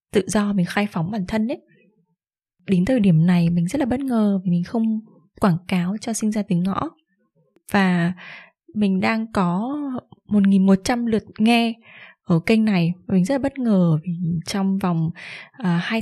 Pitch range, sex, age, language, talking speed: 175-220 Hz, female, 20-39, Vietnamese, 185 wpm